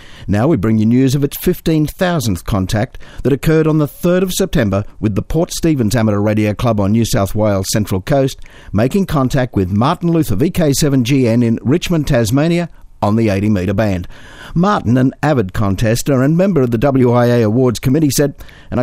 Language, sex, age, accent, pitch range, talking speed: English, male, 50-69, Australian, 110-150 Hz, 180 wpm